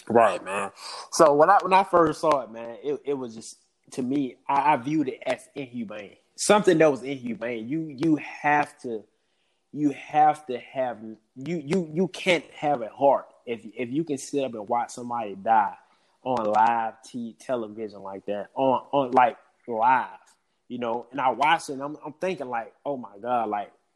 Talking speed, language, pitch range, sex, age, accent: 190 wpm, English, 125-160 Hz, male, 20-39, American